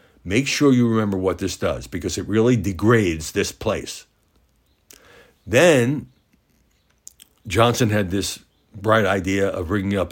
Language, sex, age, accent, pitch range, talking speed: English, male, 60-79, American, 80-110 Hz, 130 wpm